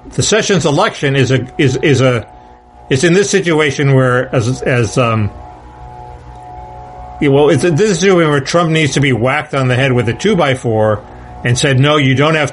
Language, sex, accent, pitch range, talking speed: English, male, American, 110-135 Hz, 190 wpm